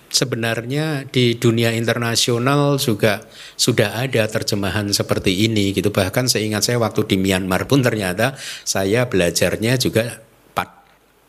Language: Indonesian